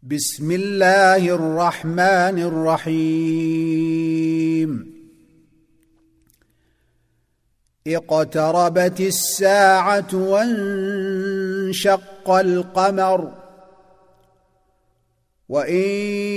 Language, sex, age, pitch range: Arabic, male, 50-69, 160-195 Hz